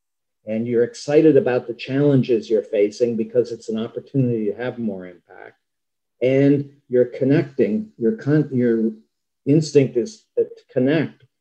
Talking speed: 130 wpm